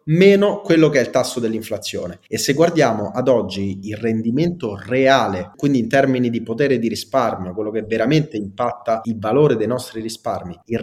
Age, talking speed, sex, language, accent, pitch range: 20-39, 175 wpm, male, Italian, native, 105-140 Hz